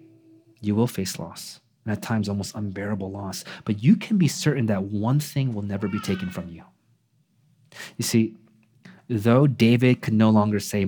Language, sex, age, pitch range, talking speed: English, male, 30-49, 105-140 Hz, 175 wpm